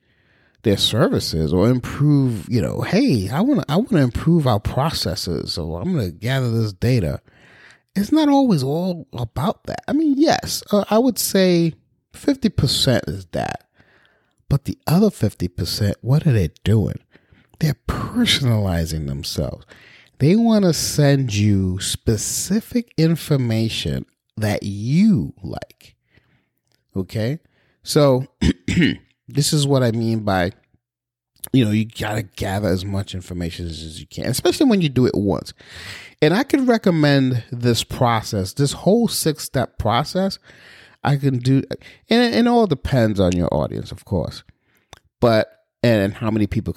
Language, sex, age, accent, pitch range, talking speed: English, male, 30-49, American, 100-155 Hz, 145 wpm